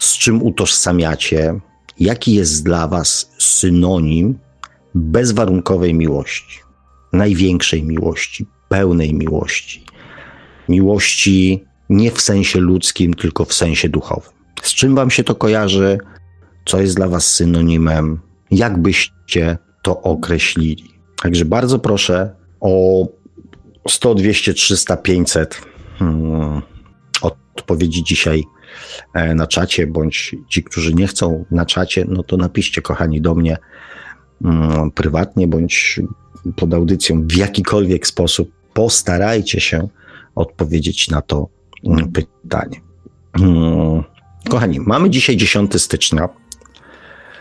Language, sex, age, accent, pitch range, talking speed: Polish, male, 50-69, native, 80-100 Hz, 105 wpm